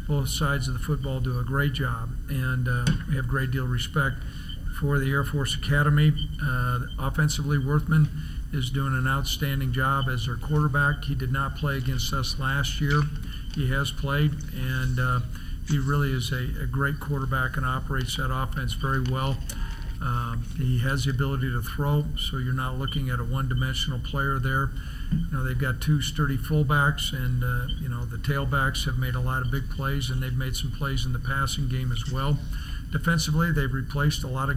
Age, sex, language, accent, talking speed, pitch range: 50-69, male, English, American, 195 wpm, 130-145 Hz